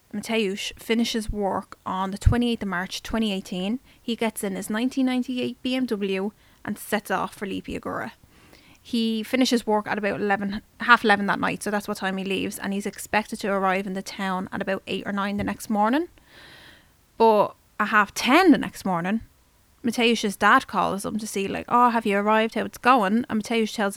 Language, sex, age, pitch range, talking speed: English, female, 10-29, 200-240 Hz, 190 wpm